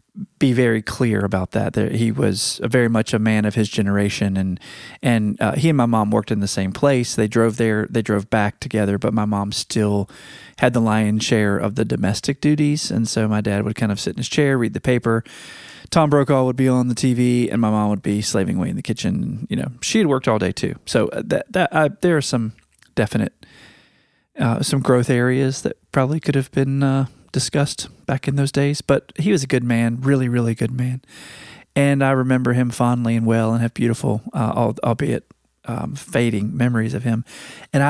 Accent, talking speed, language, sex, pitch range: American, 215 wpm, English, male, 110-135 Hz